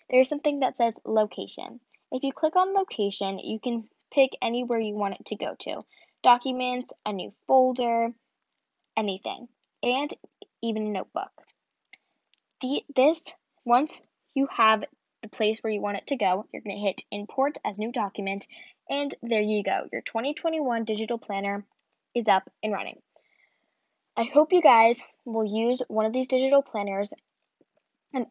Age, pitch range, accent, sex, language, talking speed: 10-29, 205-265 Hz, American, female, English, 155 wpm